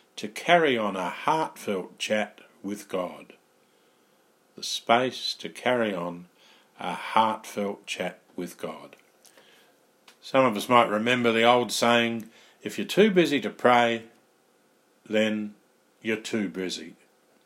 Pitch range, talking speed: 105-130 Hz, 125 wpm